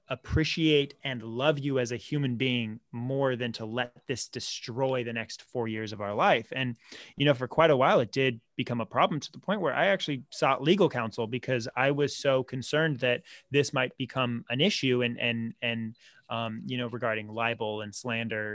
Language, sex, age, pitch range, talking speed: English, male, 20-39, 115-140 Hz, 205 wpm